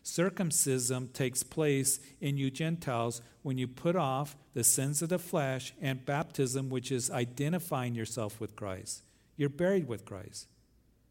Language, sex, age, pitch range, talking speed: English, male, 50-69, 120-150 Hz, 145 wpm